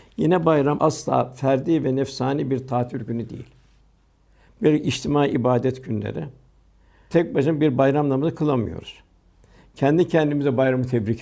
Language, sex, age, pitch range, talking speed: Turkish, male, 60-79, 120-155 Hz, 130 wpm